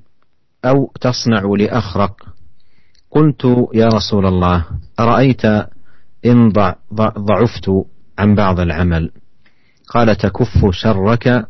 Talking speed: 85 wpm